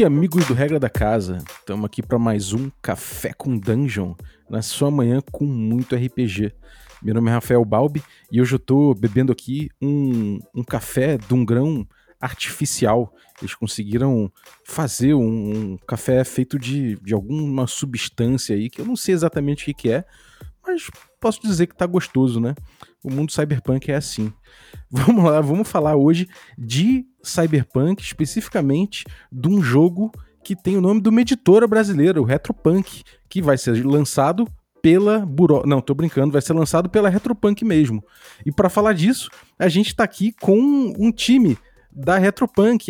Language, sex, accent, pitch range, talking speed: Portuguese, male, Brazilian, 125-185 Hz, 165 wpm